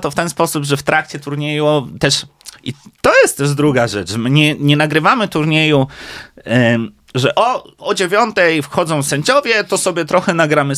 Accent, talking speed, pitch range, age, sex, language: native, 175 wpm, 130-170 Hz, 30-49, male, Polish